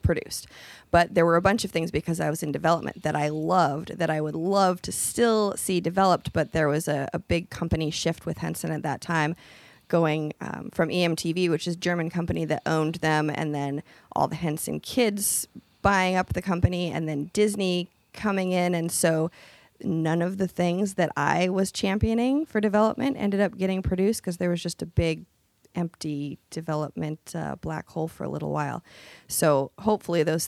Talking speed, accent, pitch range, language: 190 wpm, American, 155-185 Hz, English